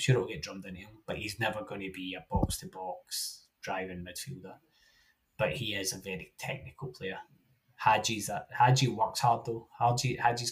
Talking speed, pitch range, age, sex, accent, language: 185 wpm, 100-125 Hz, 20-39, male, British, English